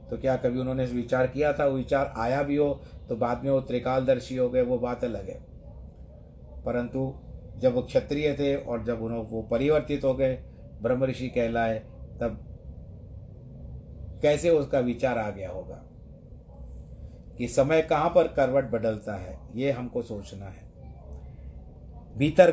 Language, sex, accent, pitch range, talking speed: Hindi, male, native, 105-130 Hz, 150 wpm